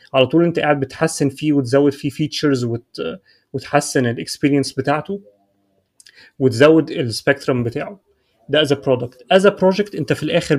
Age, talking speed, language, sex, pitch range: 30-49, 140 wpm, Arabic, male, 135-160 Hz